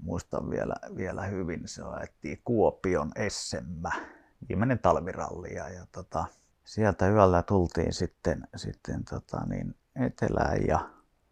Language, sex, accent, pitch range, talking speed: Finnish, male, native, 85-95 Hz, 105 wpm